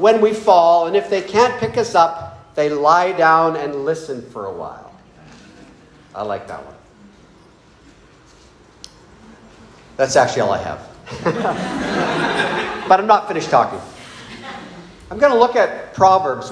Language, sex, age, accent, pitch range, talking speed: English, male, 50-69, American, 145-200 Hz, 140 wpm